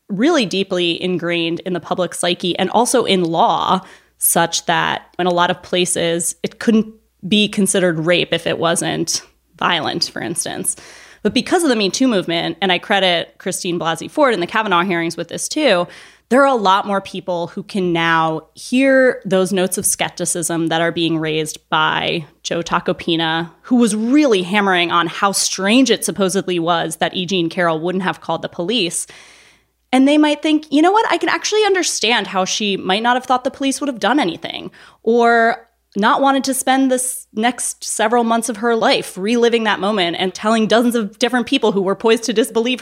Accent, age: American, 20-39